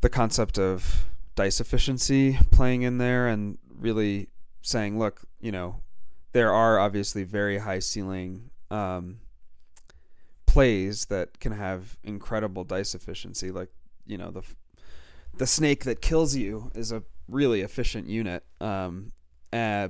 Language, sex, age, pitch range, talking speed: English, male, 30-49, 90-110 Hz, 135 wpm